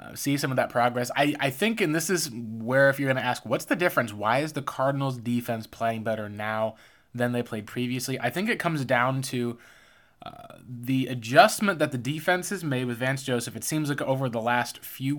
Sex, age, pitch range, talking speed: male, 20-39, 120-145 Hz, 225 wpm